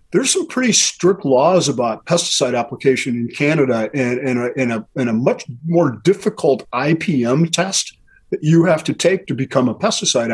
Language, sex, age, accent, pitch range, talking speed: English, male, 40-59, American, 120-145 Hz, 165 wpm